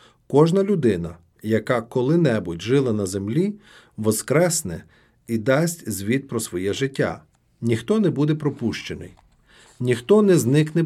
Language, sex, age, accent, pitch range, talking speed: Ukrainian, male, 50-69, native, 110-155 Hz, 115 wpm